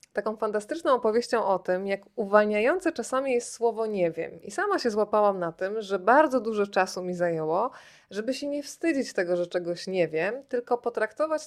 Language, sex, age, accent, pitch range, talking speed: Polish, female, 20-39, native, 185-230 Hz, 185 wpm